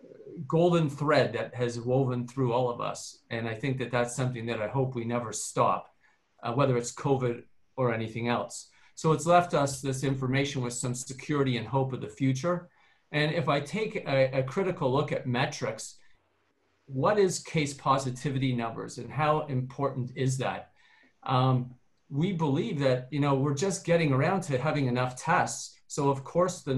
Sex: male